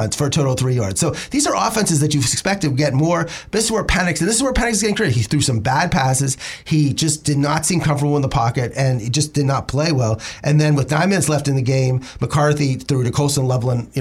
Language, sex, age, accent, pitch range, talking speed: English, male, 30-49, American, 125-155 Hz, 275 wpm